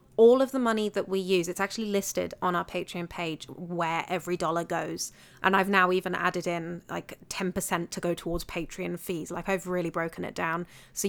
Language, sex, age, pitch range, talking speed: English, female, 30-49, 170-190 Hz, 205 wpm